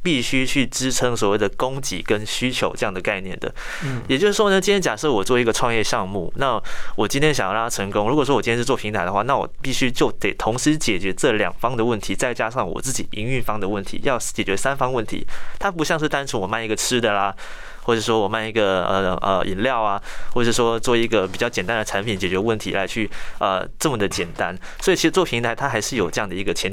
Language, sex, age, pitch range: Chinese, male, 20-39, 105-135 Hz